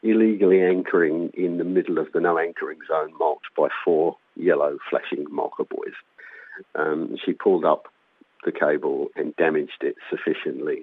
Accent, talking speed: British, 145 wpm